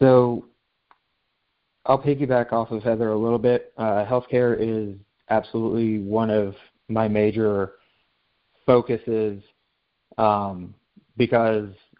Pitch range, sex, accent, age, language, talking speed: 110-120 Hz, male, American, 20-39, English, 100 wpm